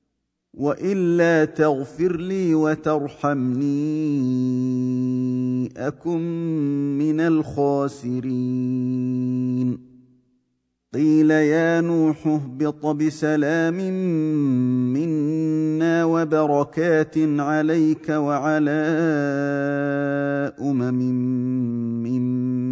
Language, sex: Arabic, male